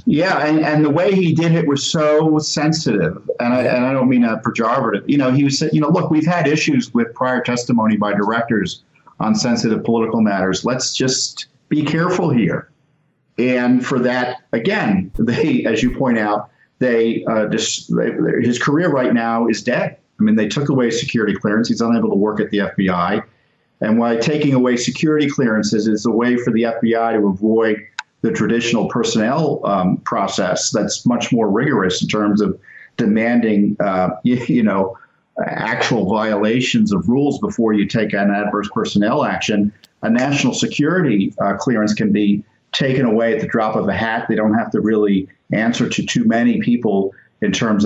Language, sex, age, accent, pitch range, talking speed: English, male, 50-69, American, 105-140 Hz, 180 wpm